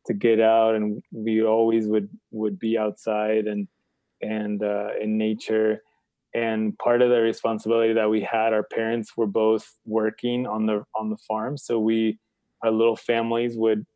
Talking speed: 170 wpm